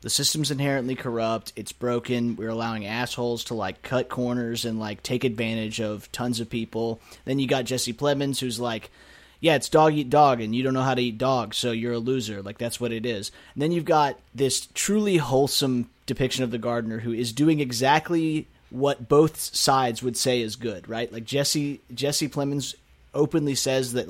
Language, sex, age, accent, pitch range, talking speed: English, male, 30-49, American, 115-135 Hz, 195 wpm